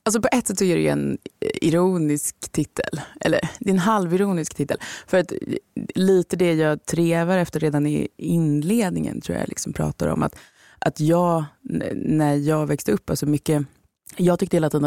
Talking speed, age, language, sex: 175 wpm, 20-39, Swedish, female